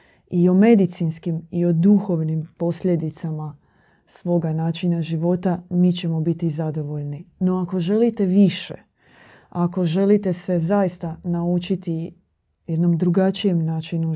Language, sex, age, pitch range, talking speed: Croatian, female, 30-49, 160-190 Hz, 110 wpm